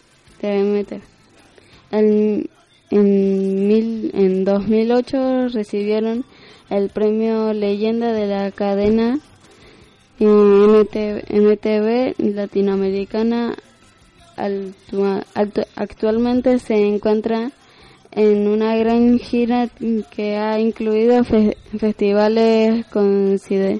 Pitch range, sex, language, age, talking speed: 200-225 Hz, female, Spanish, 10-29, 70 wpm